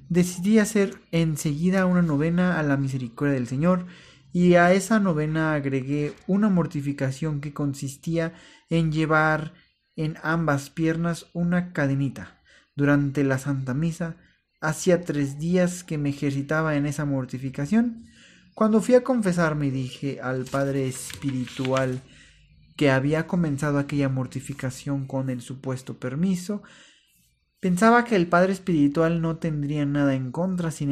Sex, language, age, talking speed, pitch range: male, Spanish, 30-49, 130 wpm, 135-170 Hz